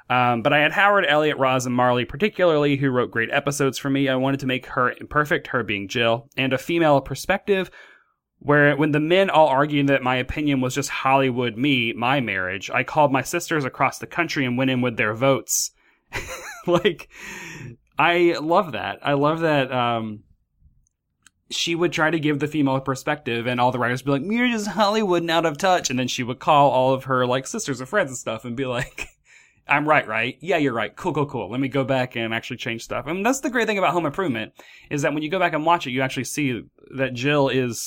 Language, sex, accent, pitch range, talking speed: English, male, American, 125-165 Hz, 230 wpm